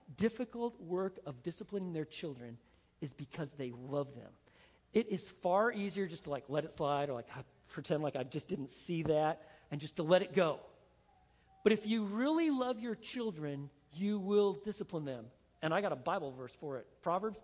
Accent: American